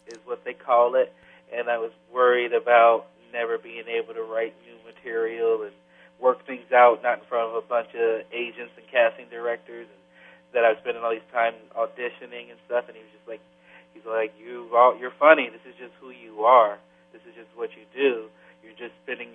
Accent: American